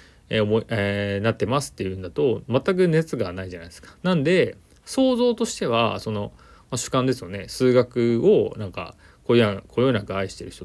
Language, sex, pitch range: Japanese, male, 95-155 Hz